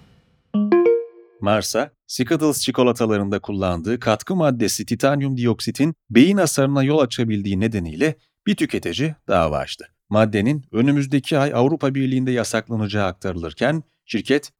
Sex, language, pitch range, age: male, Turkish, 110-140 Hz, 40-59